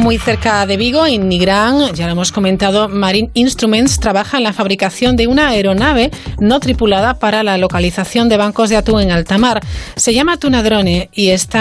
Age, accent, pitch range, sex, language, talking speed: 40-59, Spanish, 185-220 Hz, female, Spanish, 185 wpm